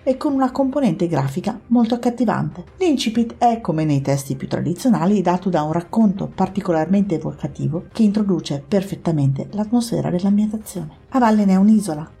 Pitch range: 155-220 Hz